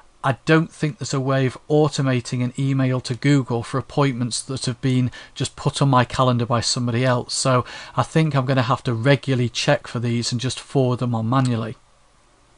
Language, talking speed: English, 205 wpm